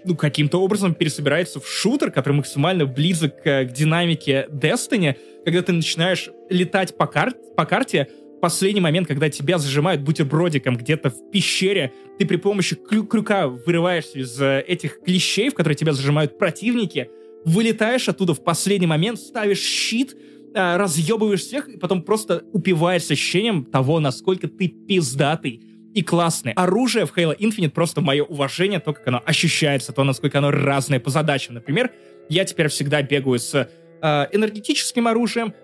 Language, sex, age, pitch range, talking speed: Russian, male, 20-39, 145-190 Hz, 150 wpm